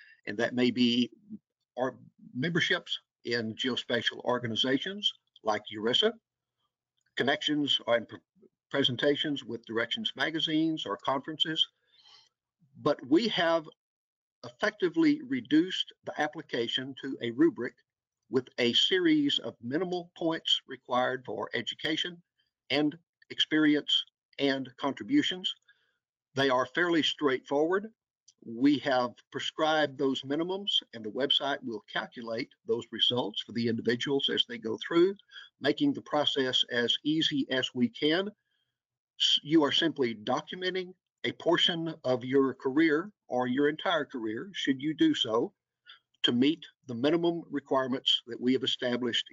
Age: 50-69